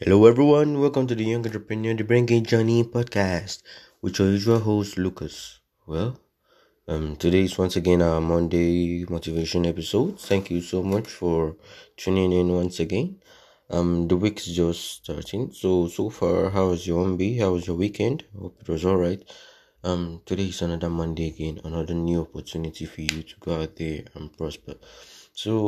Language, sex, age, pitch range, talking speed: English, male, 20-39, 85-95 Hz, 175 wpm